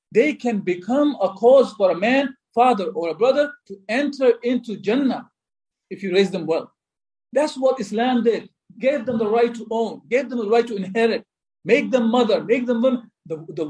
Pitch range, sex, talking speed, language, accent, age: 180-245 Hz, male, 190 wpm, English, Indian, 50-69